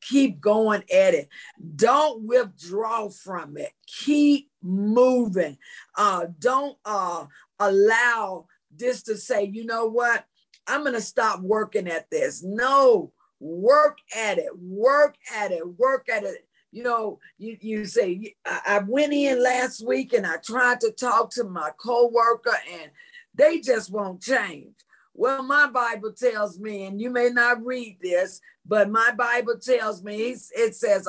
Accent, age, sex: American, 50-69, female